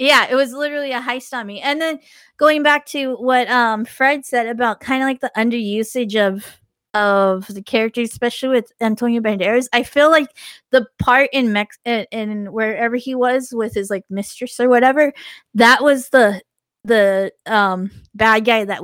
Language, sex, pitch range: English, female, 205-250 Hz